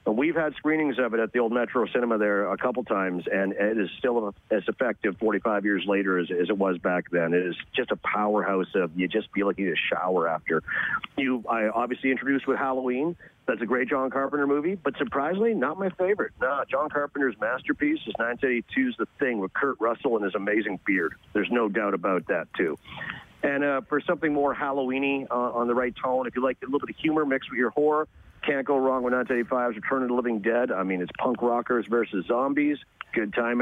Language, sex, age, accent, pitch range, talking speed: English, male, 40-59, American, 110-145 Hz, 220 wpm